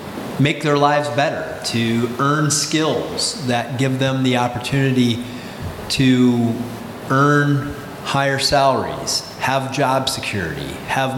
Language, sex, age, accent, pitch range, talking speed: English, male, 30-49, American, 120-145 Hz, 105 wpm